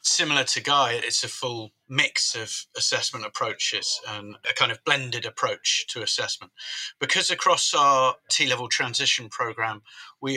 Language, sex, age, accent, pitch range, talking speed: English, male, 30-49, British, 120-145 Hz, 145 wpm